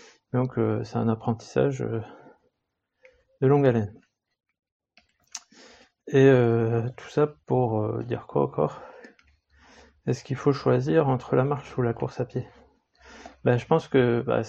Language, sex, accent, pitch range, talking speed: French, male, French, 115-130 Hz, 145 wpm